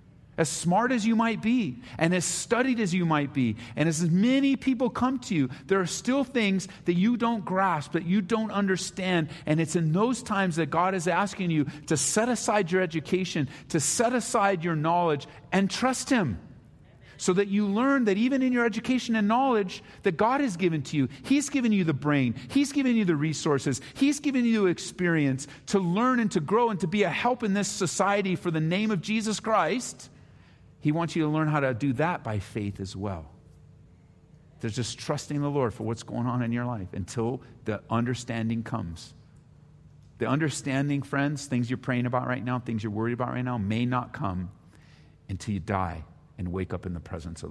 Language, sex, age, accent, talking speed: English, male, 40-59, American, 205 wpm